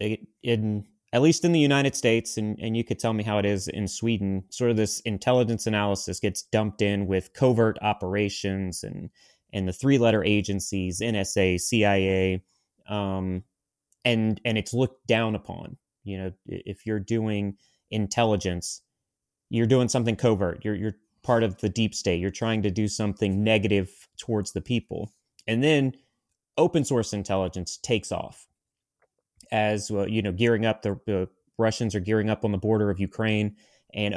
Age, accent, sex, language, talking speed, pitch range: 30-49, American, male, English, 160 wpm, 100-115 Hz